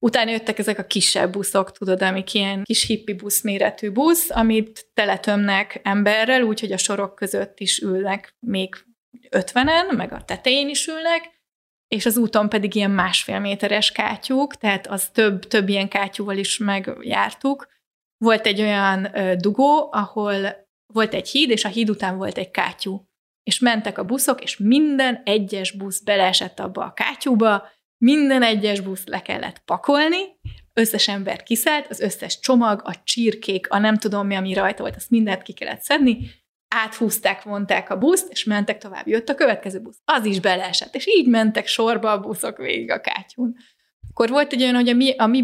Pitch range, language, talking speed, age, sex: 200-245 Hz, Hungarian, 170 wpm, 20-39, female